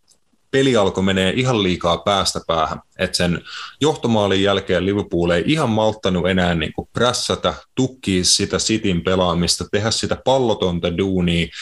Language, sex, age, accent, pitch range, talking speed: Finnish, male, 30-49, native, 85-105 Hz, 130 wpm